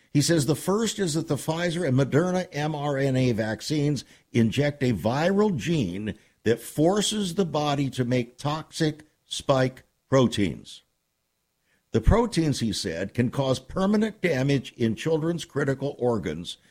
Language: English